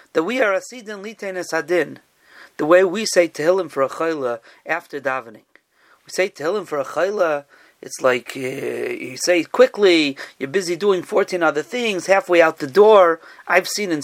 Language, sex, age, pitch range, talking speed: English, male, 40-59, 190-285 Hz, 175 wpm